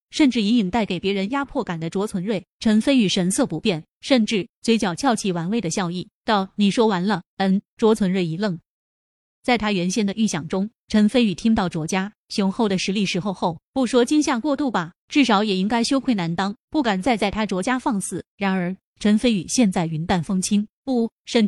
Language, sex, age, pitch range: Chinese, female, 20-39, 190-235 Hz